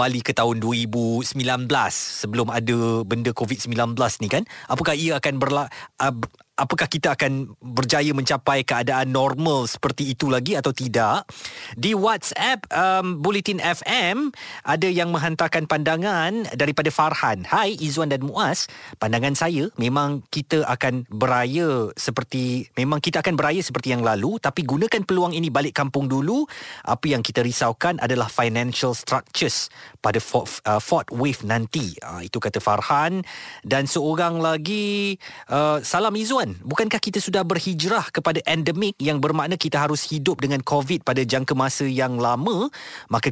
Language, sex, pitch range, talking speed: Malay, male, 120-170 Hz, 145 wpm